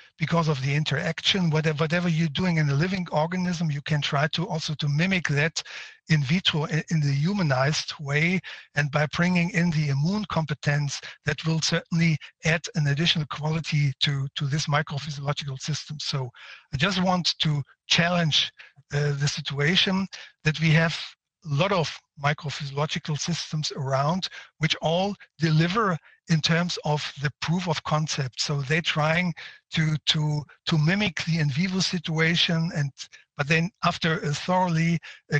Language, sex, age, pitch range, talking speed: English, male, 60-79, 150-175 Hz, 155 wpm